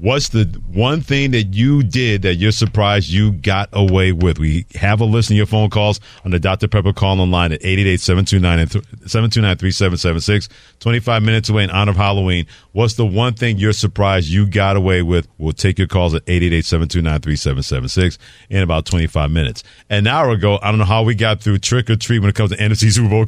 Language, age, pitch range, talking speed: English, 40-59, 95-120 Hz, 200 wpm